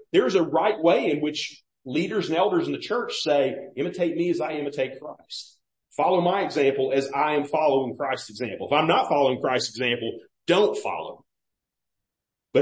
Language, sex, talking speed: English, male, 180 wpm